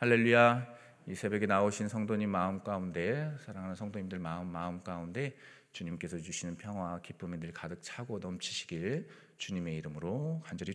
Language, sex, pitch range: Korean, male, 95-140 Hz